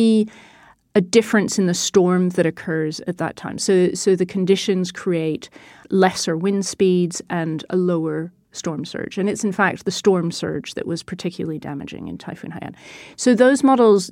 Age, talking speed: 30-49, 170 wpm